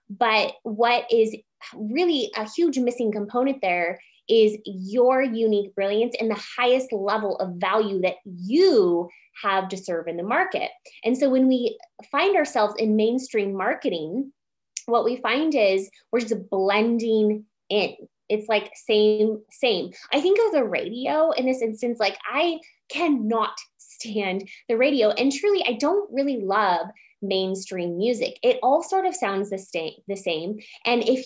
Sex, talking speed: female, 155 wpm